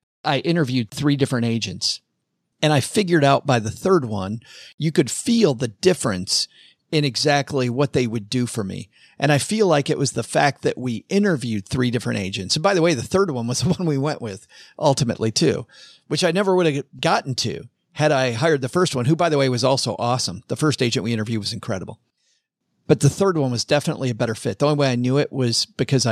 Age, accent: 40-59, American